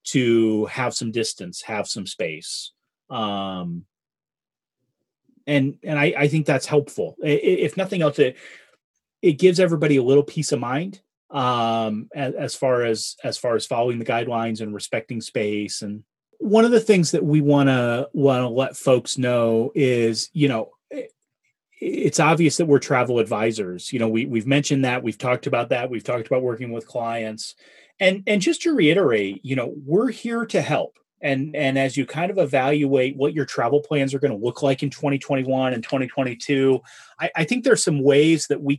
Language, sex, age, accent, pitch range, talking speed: English, male, 30-49, American, 120-155 Hz, 185 wpm